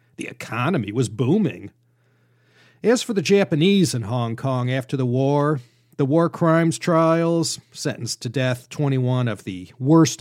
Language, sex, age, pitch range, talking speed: English, male, 40-59, 120-160 Hz, 145 wpm